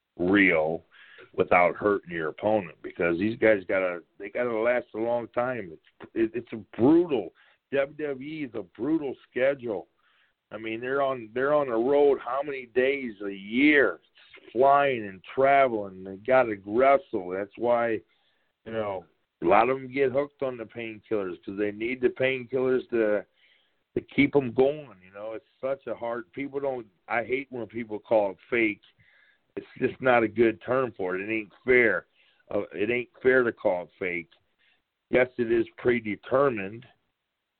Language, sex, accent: English, male, American